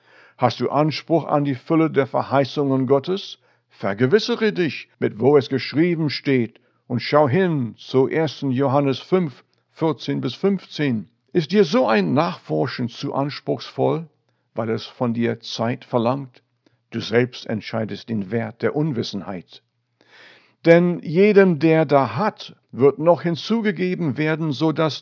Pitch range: 120-165 Hz